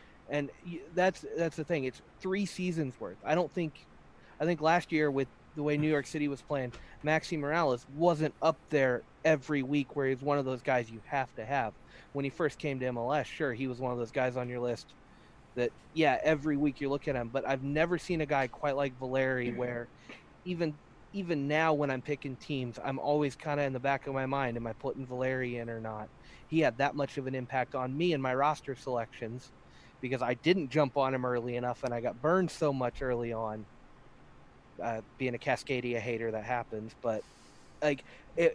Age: 30-49